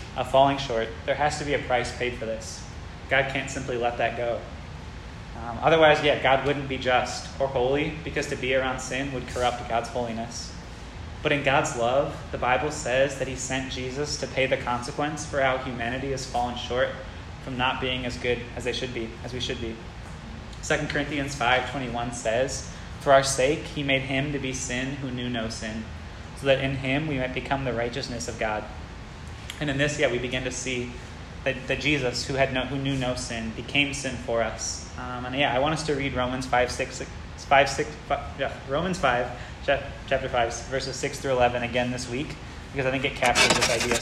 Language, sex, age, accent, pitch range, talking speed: English, male, 20-39, American, 115-135 Hz, 205 wpm